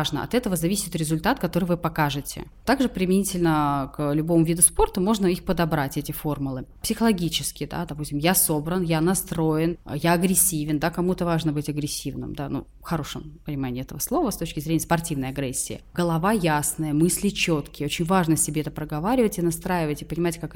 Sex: female